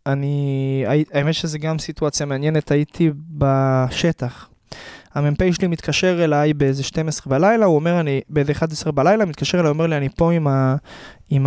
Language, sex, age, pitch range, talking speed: Hebrew, male, 20-39, 135-170 Hz, 145 wpm